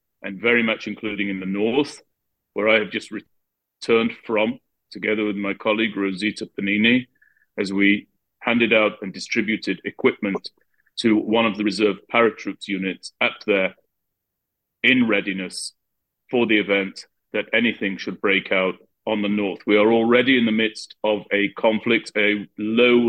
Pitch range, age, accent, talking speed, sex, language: 100-115 Hz, 30-49, British, 155 wpm, male, English